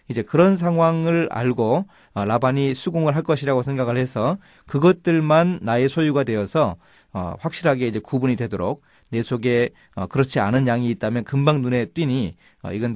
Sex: male